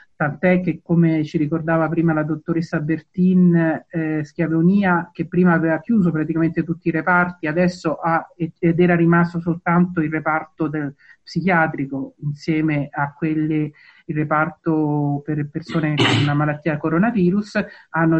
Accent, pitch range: native, 155-180 Hz